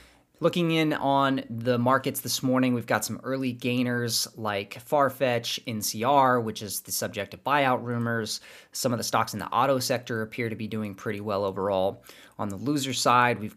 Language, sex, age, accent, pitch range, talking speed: English, male, 30-49, American, 105-125 Hz, 185 wpm